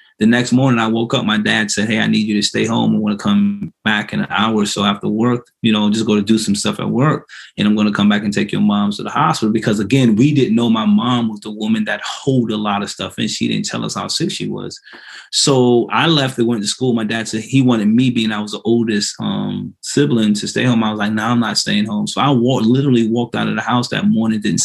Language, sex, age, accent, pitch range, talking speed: English, male, 20-39, American, 105-125 Hz, 290 wpm